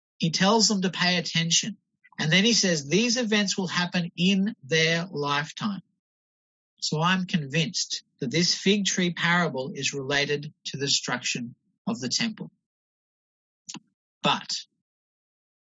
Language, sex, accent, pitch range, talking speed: English, male, Australian, 155-200 Hz, 130 wpm